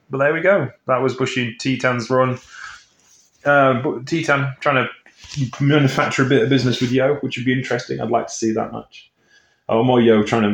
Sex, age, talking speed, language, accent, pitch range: male, 20-39, 205 wpm, English, British, 105-130 Hz